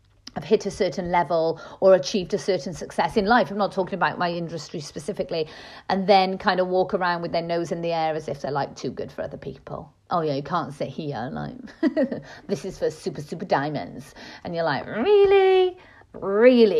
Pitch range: 175-220 Hz